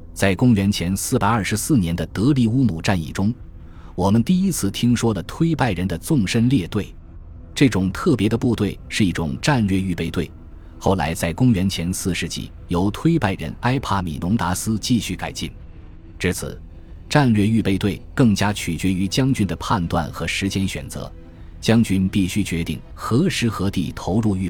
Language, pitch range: Chinese, 85-110 Hz